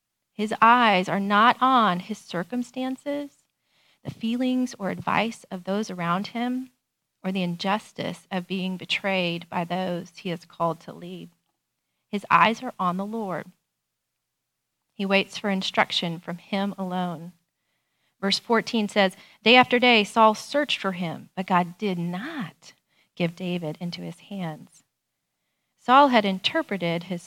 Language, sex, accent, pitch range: English, female, American, 175-220 Hz